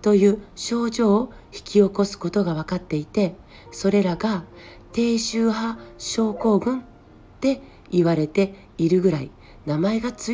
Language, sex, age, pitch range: Japanese, female, 40-59, 165-225 Hz